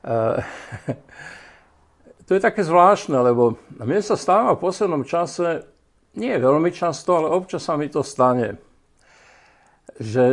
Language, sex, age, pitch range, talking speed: Slovak, male, 60-79, 120-170 Hz, 130 wpm